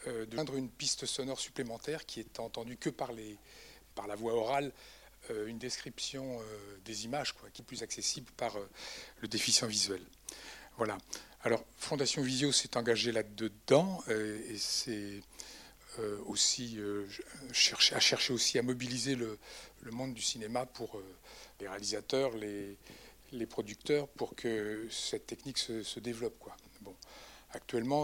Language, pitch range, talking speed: French, 115-135 Hz, 140 wpm